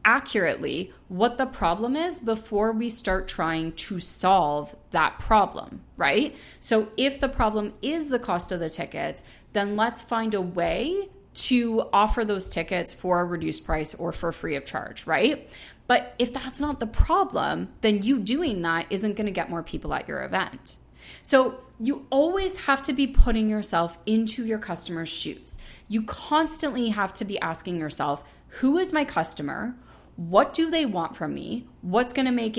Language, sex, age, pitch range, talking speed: English, female, 30-49, 175-240 Hz, 175 wpm